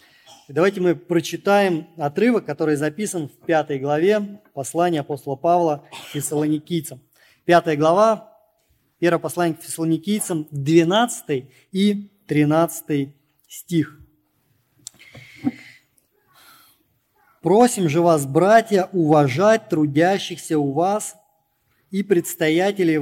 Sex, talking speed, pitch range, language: male, 90 wpm, 150-180 Hz, Russian